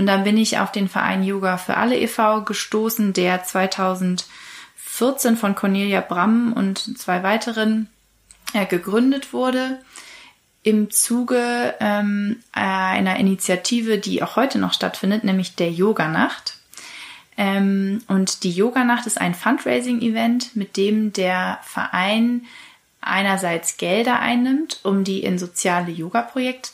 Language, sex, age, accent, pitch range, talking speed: German, female, 30-49, German, 195-235 Hz, 115 wpm